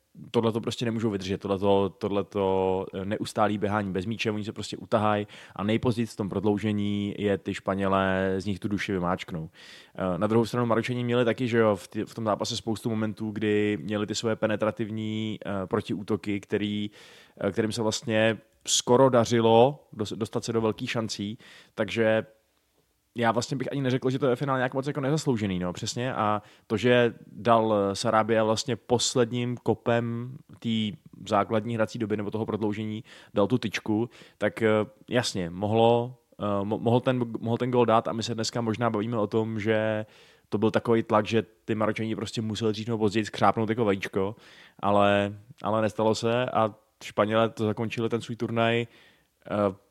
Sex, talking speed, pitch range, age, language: male, 165 wpm, 105-115 Hz, 20-39, Czech